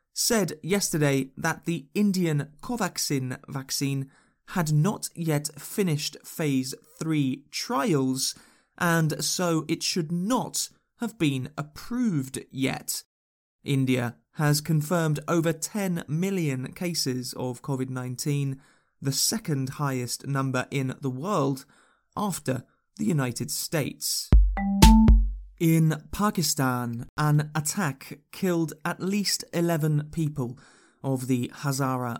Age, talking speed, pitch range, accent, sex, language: 20-39, 105 wpm, 130-165 Hz, British, male, English